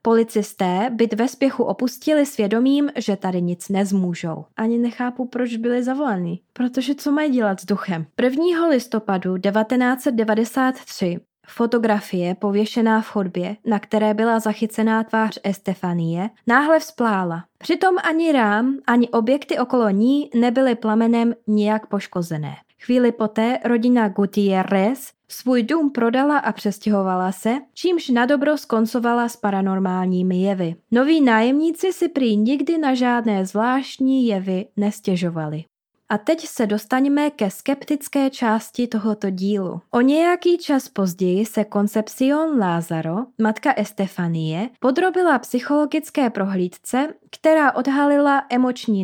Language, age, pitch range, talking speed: Czech, 20-39, 200-265 Hz, 120 wpm